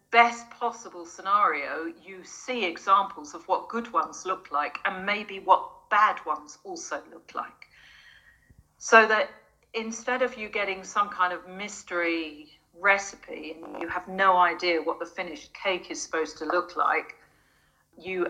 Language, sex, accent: English, female, British